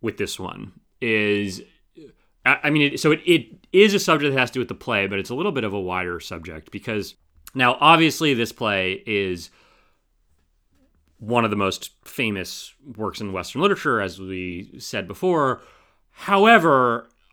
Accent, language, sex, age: American, English, male, 30-49